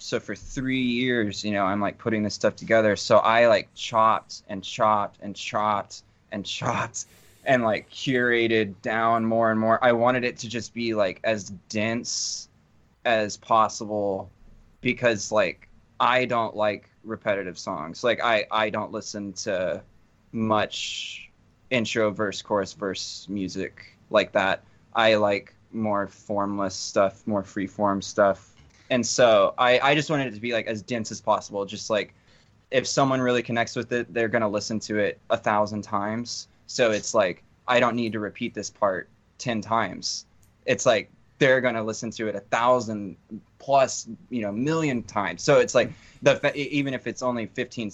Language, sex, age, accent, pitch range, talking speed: English, male, 20-39, American, 100-120 Hz, 170 wpm